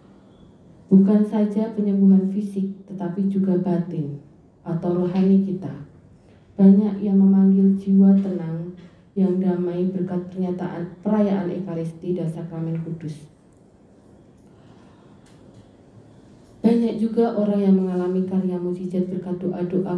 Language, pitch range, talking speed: Indonesian, 175-200 Hz, 100 wpm